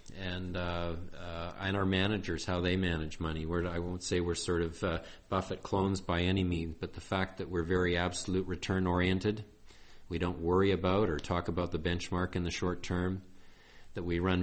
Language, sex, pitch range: English, male, 90-100 Hz